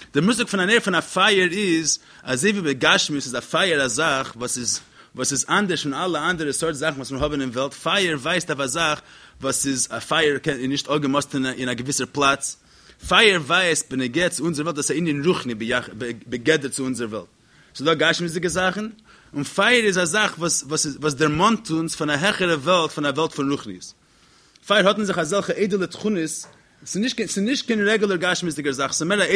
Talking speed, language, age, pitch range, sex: 185 wpm, English, 30-49, 145-200 Hz, male